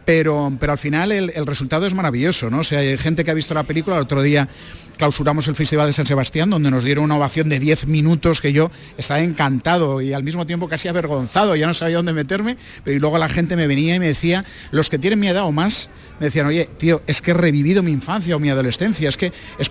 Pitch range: 140-170 Hz